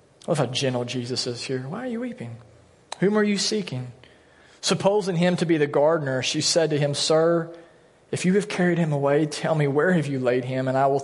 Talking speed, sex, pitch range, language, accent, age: 230 wpm, male, 125-195 Hz, English, American, 40-59